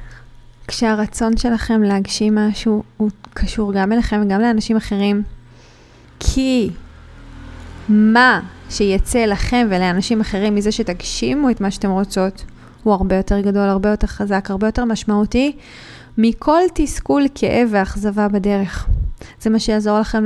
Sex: female